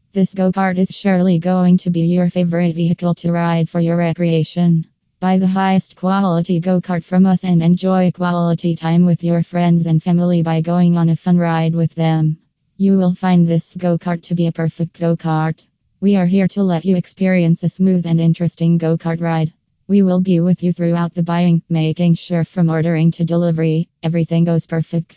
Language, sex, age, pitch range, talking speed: English, female, 20-39, 165-180 Hz, 190 wpm